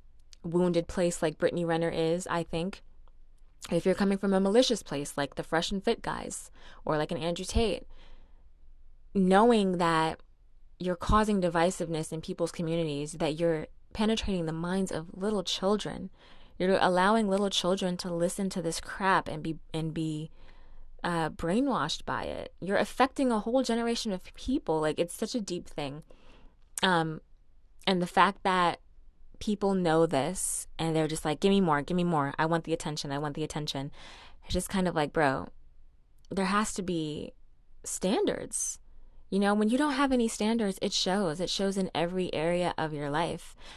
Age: 20-39